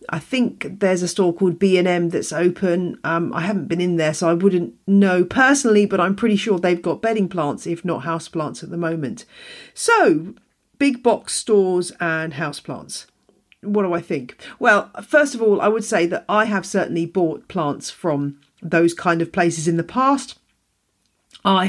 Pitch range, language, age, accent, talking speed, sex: 165-210 Hz, English, 40-59, British, 185 wpm, female